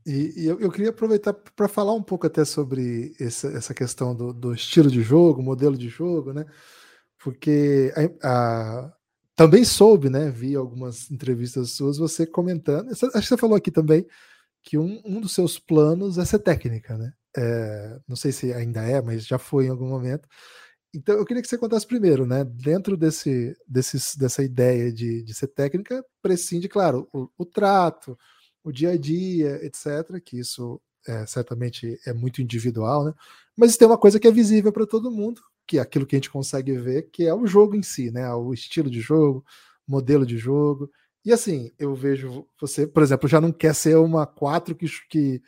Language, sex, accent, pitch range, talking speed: Portuguese, male, Brazilian, 125-165 Hz, 190 wpm